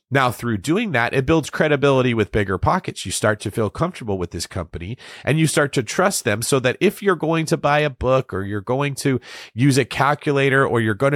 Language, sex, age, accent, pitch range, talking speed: English, male, 40-59, American, 115-155 Hz, 225 wpm